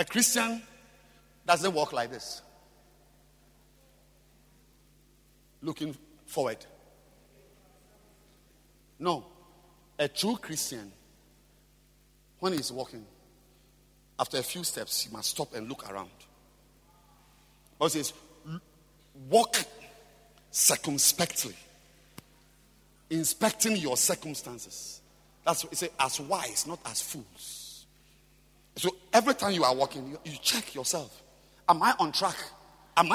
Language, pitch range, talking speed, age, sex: English, 145-205 Hz, 100 wpm, 50-69, male